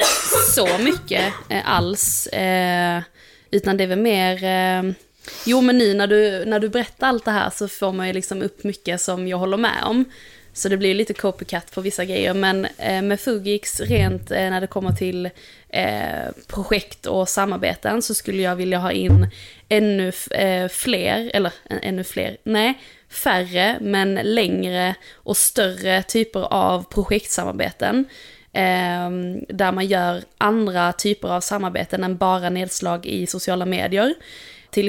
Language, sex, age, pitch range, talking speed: Swedish, female, 20-39, 185-210 Hz, 145 wpm